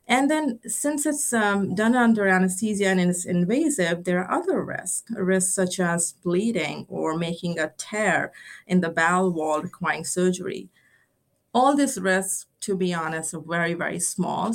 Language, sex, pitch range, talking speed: English, female, 170-205 Hz, 160 wpm